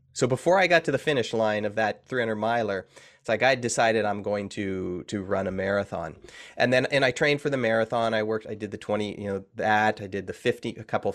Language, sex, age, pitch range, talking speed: English, male, 30-49, 100-130 Hz, 250 wpm